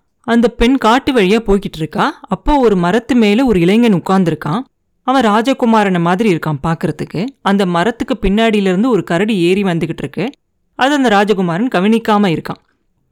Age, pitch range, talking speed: 30-49, 180-230 Hz, 140 wpm